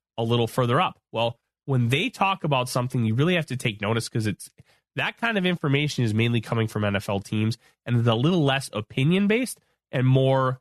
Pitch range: 110-145 Hz